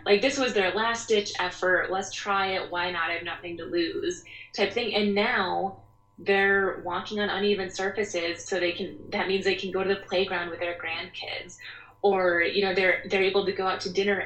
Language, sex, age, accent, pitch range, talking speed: English, female, 20-39, American, 175-205 Hz, 215 wpm